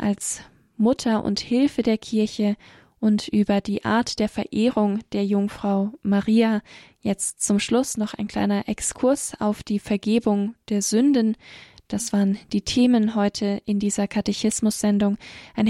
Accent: German